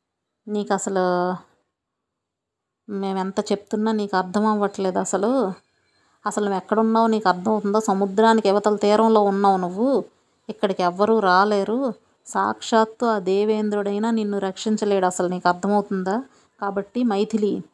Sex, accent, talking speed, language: female, native, 110 wpm, Telugu